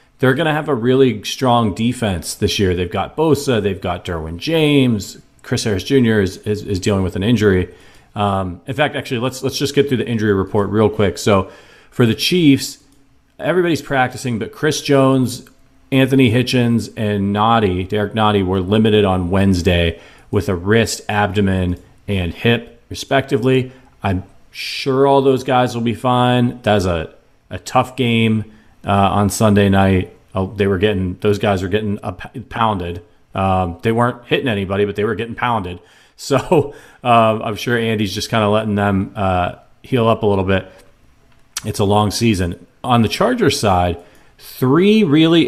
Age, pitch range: 40-59, 100-130 Hz